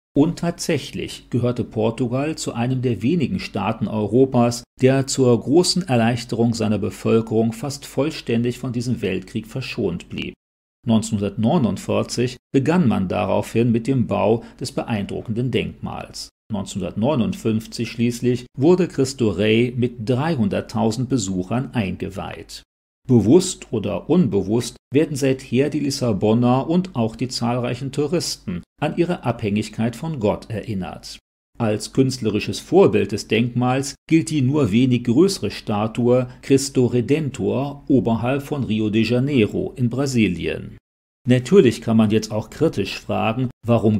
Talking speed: 120 wpm